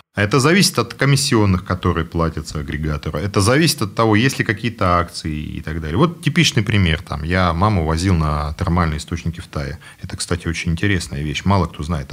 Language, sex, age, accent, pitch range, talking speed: Russian, male, 40-59, native, 80-120 Hz, 185 wpm